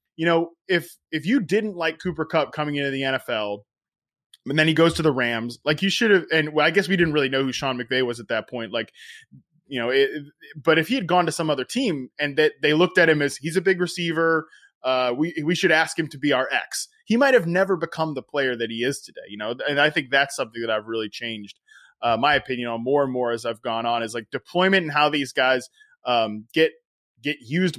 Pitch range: 130-165 Hz